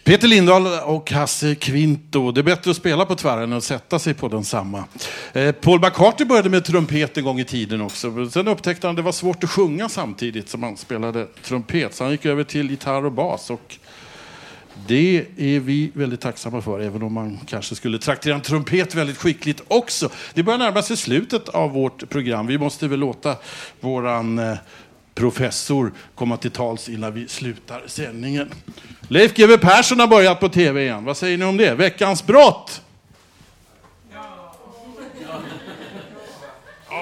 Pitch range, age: 125-180 Hz, 60-79